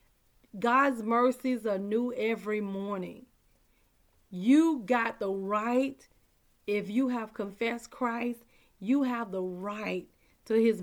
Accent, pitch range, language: American, 205-255 Hz, English